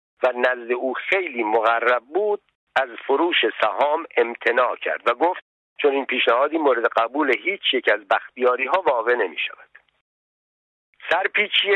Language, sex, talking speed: Persian, male, 140 wpm